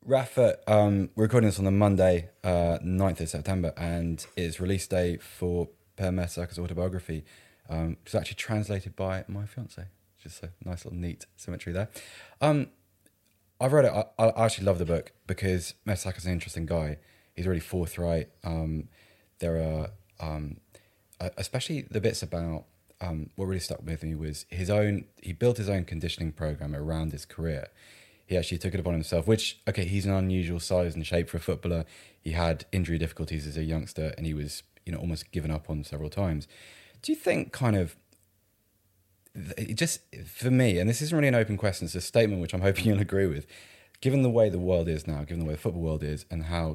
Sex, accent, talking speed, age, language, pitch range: male, British, 200 wpm, 20-39, English, 80-100 Hz